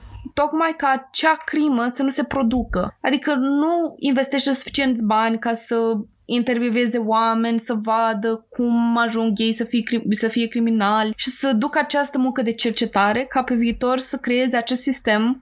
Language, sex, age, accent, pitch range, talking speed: Romanian, female, 20-39, native, 225-270 Hz, 160 wpm